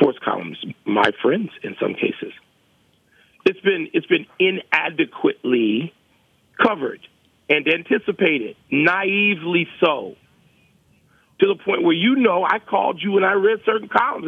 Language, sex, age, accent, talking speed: English, male, 50-69, American, 130 wpm